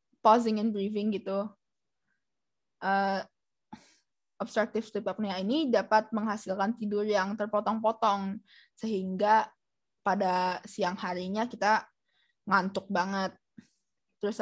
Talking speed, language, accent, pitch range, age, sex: 90 wpm, Indonesian, native, 195-215 Hz, 10-29, female